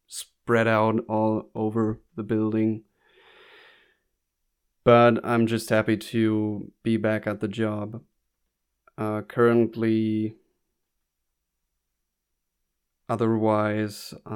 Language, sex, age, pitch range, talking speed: English, male, 30-49, 110-120 Hz, 80 wpm